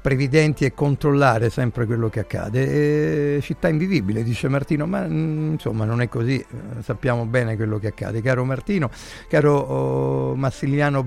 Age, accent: 50-69, native